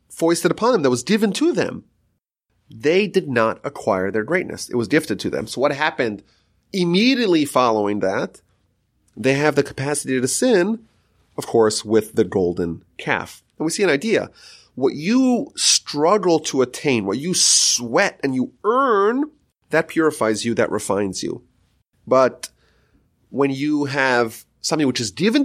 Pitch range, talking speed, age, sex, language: 105-150 Hz, 160 wpm, 30-49, male, English